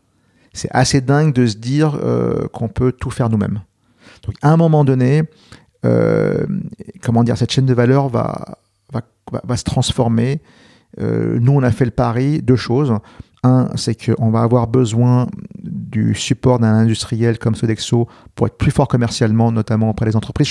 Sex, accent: male, French